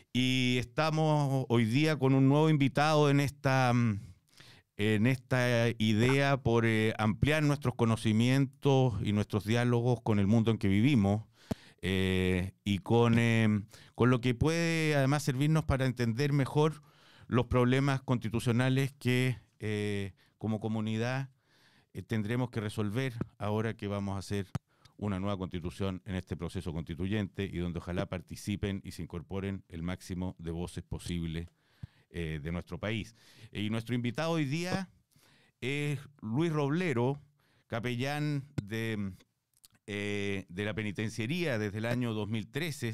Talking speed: 135 wpm